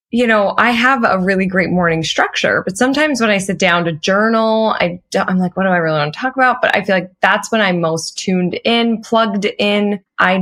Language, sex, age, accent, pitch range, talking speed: English, female, 20-39, American, 170-210 Hz, 240 wpm